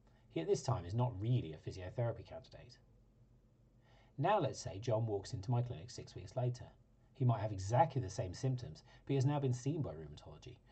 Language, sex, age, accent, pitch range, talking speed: English, male, 40-59, British, 110-130 Hz, 195 wpm